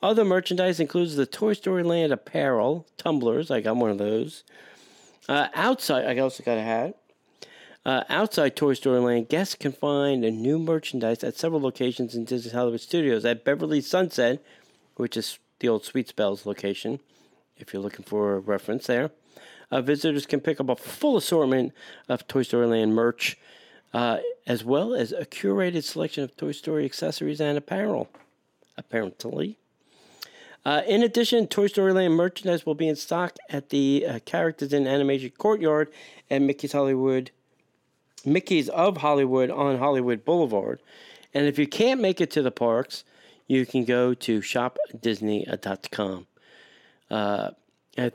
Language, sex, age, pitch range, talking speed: English, male, 40-59, 120-165 Hz, 155 wpm